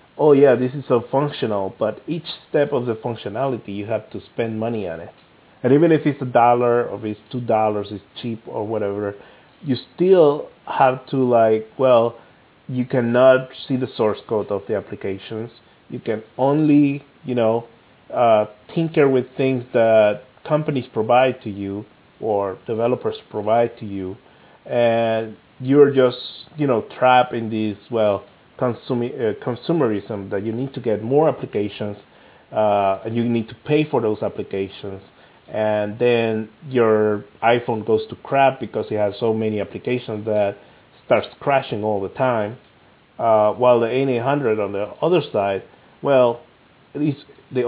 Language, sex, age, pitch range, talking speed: English, male, 30-49, 105-130 Hz, 155 wpm